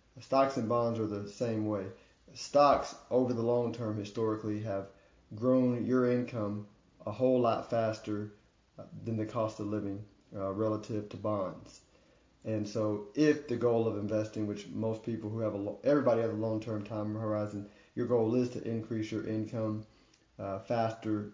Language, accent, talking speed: English, American, 165 wpm